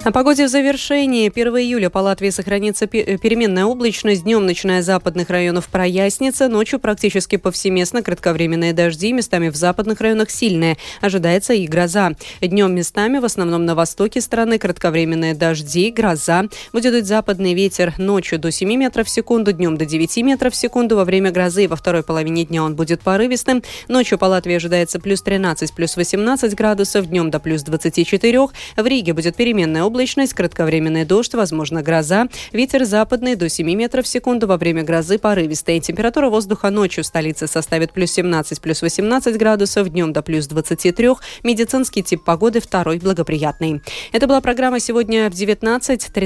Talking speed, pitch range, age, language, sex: 165 wpm, 170-230 Hz, 20-39, Russian, female